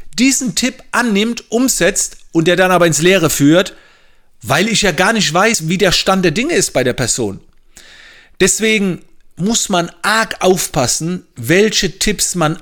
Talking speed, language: 160 wpm, German